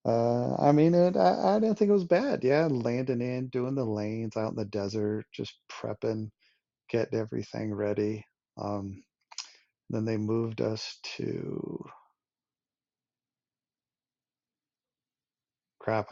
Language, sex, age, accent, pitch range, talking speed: English, male, 40-59, American, 105-130 Hz, 120 wpm